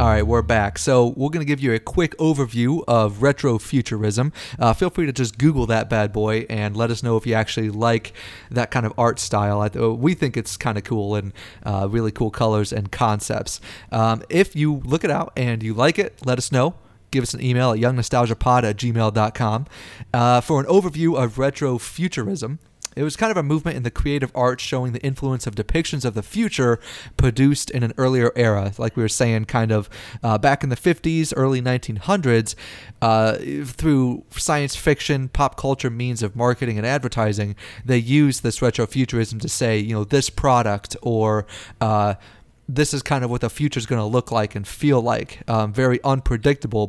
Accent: American